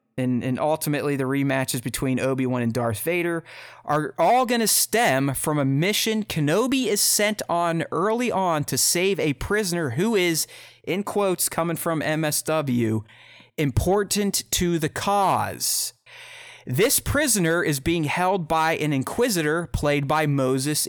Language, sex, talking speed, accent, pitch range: English, male, 145 wpm, American, 130-170 Hz